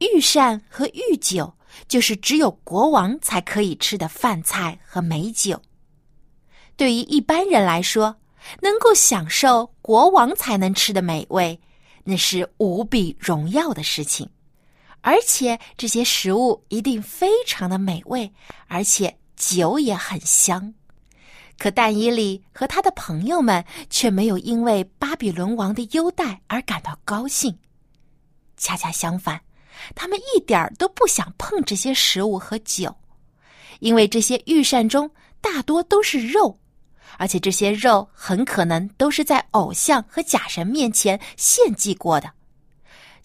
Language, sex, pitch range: Chinese, female, 180-275 Hz